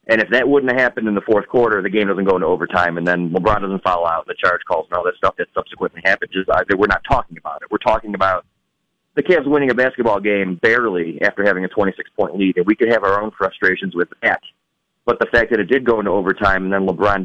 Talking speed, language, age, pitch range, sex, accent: 260 wpm, English, 30-49, 90-105 Hz, male, American